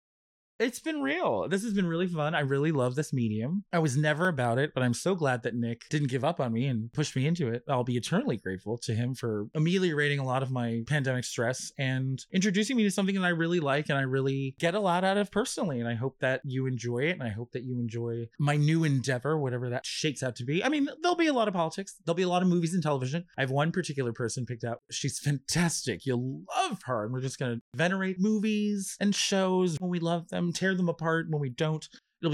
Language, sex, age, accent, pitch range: Chinese, male, 30-49, American, 130-180 Hz